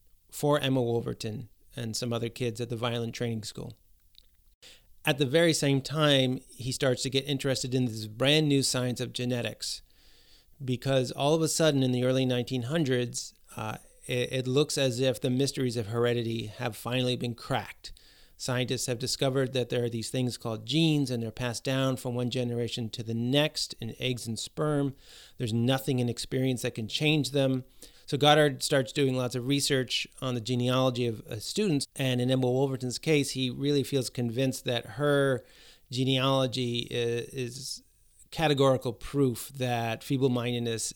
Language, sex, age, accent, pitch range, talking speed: English, male, 30-49, American, 120-135 Hz, 165 wpm